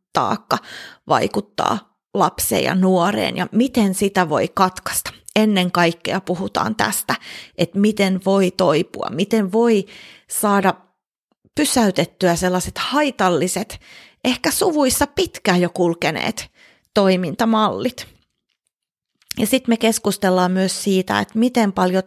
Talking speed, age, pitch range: 105 wpm, 30-49, 185-235 Hz